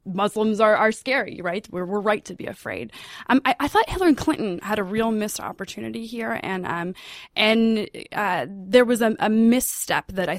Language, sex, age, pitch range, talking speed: English, female, 20-39, 190-245 Hz, 195 wpm